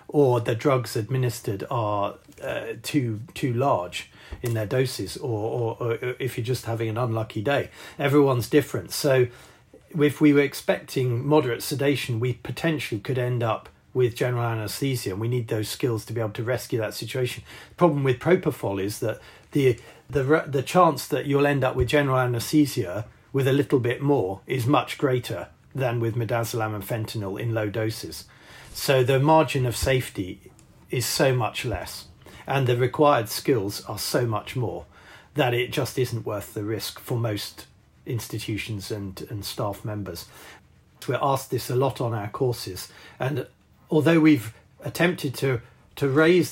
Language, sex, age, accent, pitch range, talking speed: English, male, 40-59, British, 115-140 Hz, 170 wpm